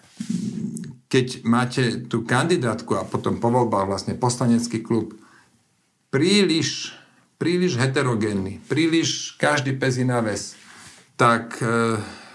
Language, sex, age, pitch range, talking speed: Slovak, male, 50-69, 115-130 Hz, 85 wpm